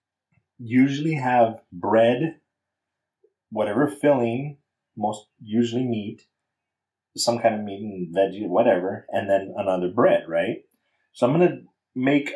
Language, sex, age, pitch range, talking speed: English, male, 30-49, 100-140 Hz, 120 wpm